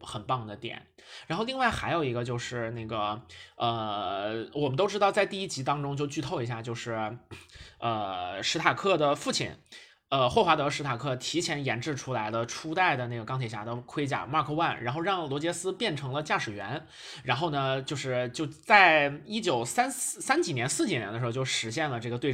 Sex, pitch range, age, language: male, 120-170 Hz, 20-39, Chinese